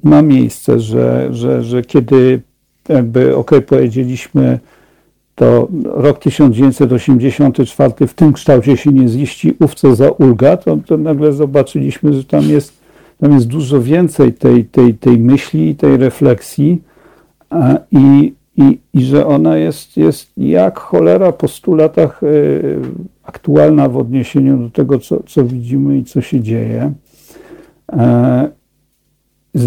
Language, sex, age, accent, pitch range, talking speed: Polish, male, 50-69, native, 120-140 Hz, 135 wpm